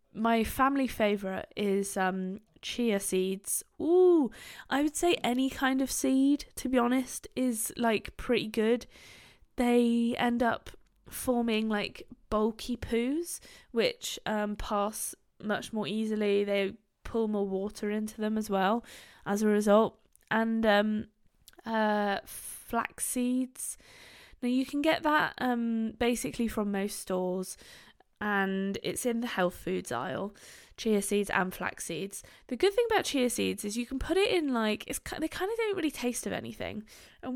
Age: 20-39